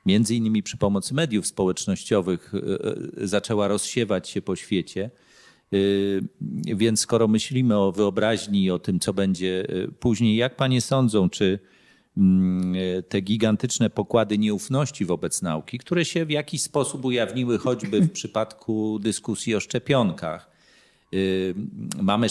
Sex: male